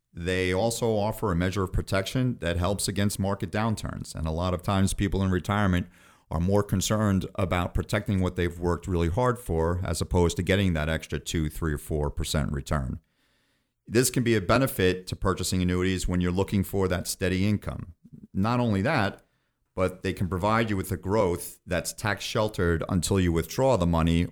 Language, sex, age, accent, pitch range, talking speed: English, male, 40-59, American, 85-110 Hz, 190 wpm